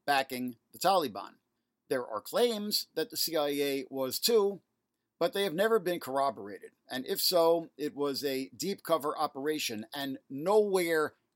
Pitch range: 135-170 Hz